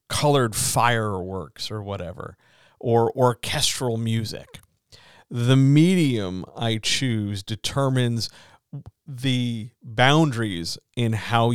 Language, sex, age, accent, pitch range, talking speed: English, male, 40-59, American, 110-130 Hz, 85 wpm